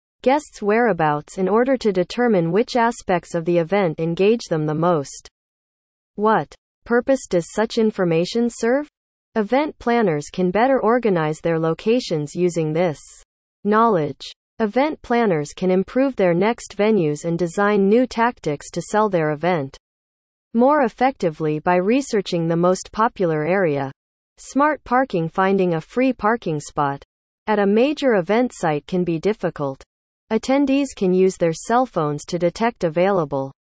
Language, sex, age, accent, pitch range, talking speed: English, female, 30-49, American, 165-230 Hz, 140 wpm